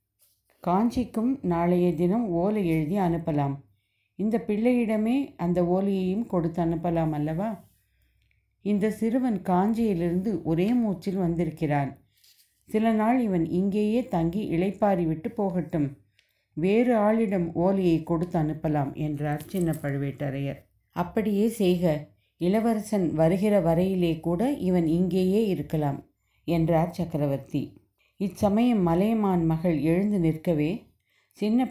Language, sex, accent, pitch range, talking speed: Tamil, female, native, 150-195 Hz, 95 wpm